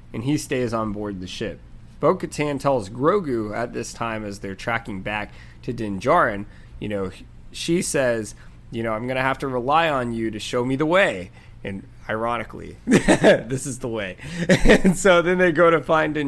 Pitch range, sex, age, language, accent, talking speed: 110-170 Hz, male, 20-39, English, American, 195 wpm